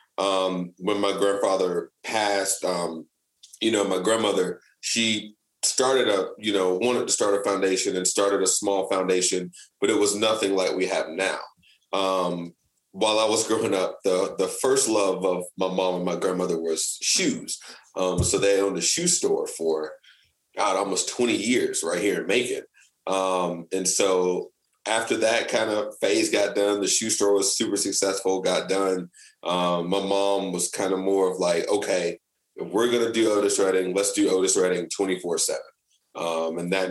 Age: 30-49